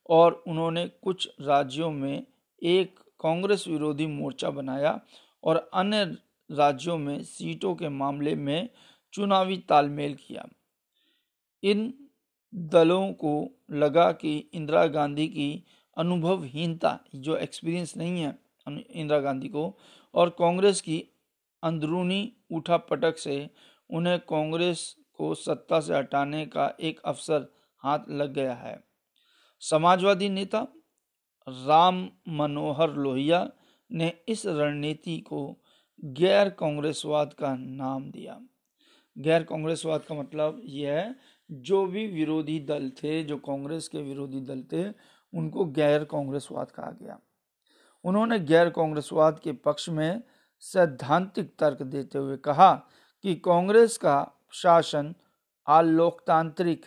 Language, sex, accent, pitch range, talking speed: Hindi, male, native, 150-185 Hz, 115 wpm